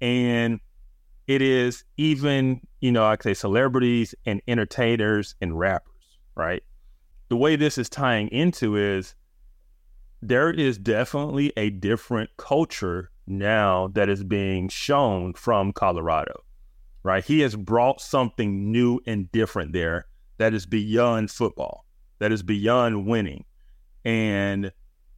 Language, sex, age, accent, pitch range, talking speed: English, male, 30-49, American, 95-120 Hz, 125 wpm